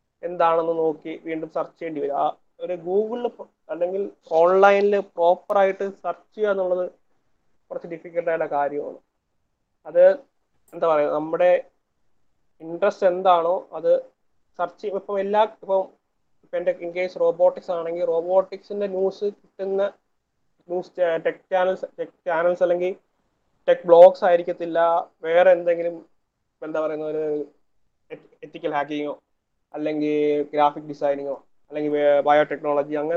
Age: 30-49